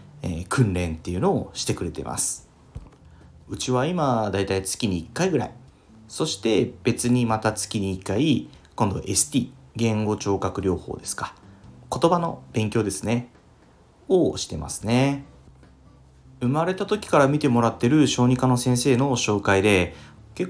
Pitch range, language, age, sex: 90-125 Hz, Japanese, 40-59, male